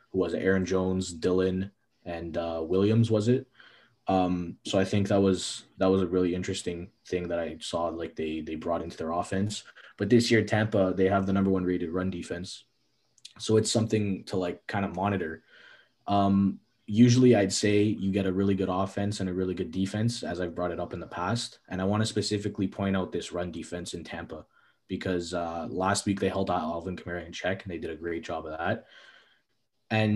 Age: 20-39